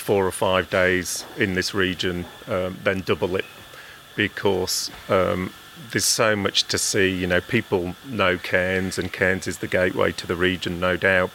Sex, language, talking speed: male, English, 175 wpm